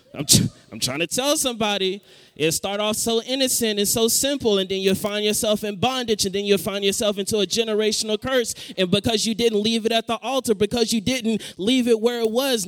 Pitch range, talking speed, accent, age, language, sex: 150-225 Hz, 225 wpm, American, 20-39, English, male